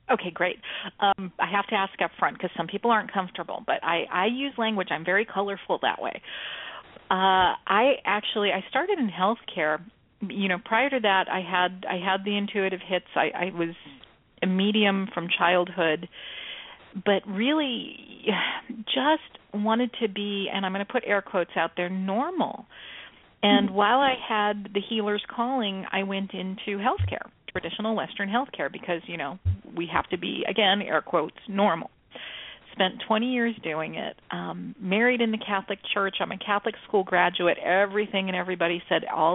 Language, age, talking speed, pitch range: English, 40-59, 170 wpm, 180-220 Hz